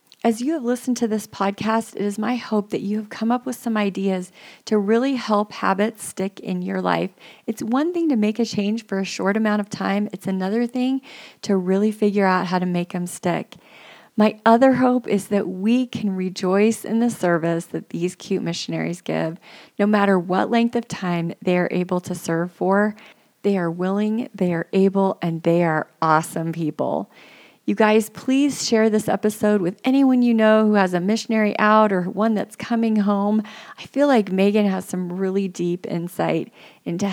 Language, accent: English, American